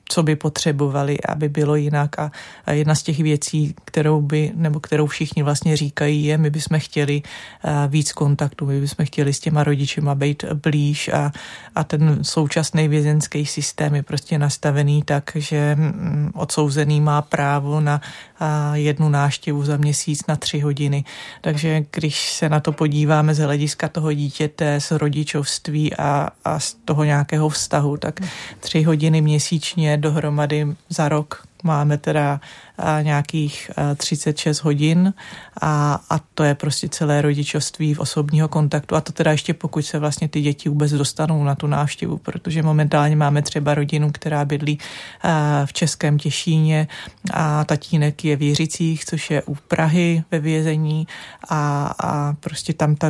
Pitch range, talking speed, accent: 145-155 Hz, 150 wpm, native